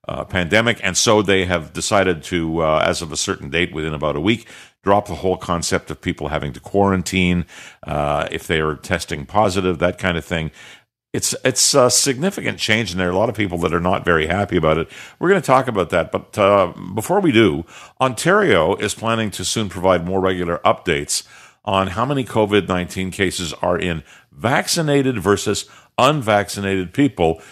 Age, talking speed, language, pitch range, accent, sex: 50-69, 190 wpm, English, 85-105 Hz, American, male